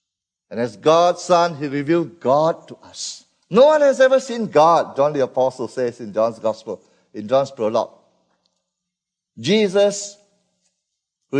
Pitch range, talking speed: 130-180 Hz, 140 wpm